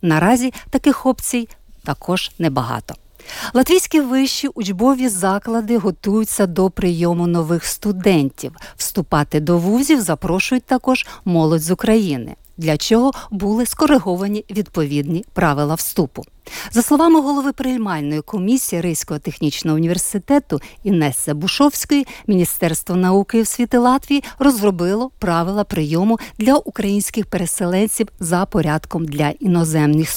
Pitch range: 160-240 Hz